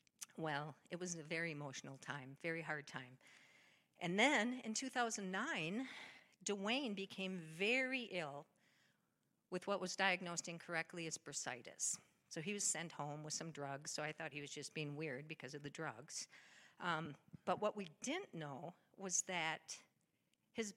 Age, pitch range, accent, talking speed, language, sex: 50-69, 155-200 Hz, American, 155 wpm, English, female